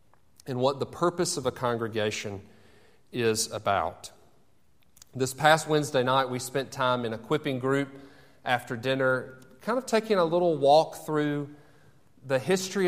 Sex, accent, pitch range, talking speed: male, American, 125-160 Hz, 145 wpm